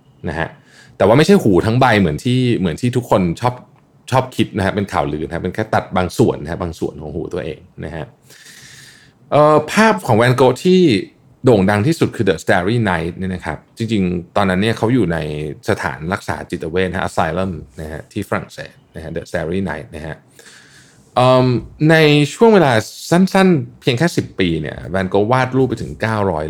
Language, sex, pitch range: Thai, male, 90-130 Hz